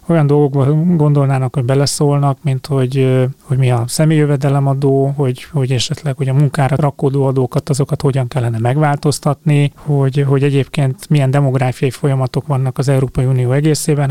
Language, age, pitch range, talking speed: Hungarian, 30-49, 135-150 Hz, 150 wpm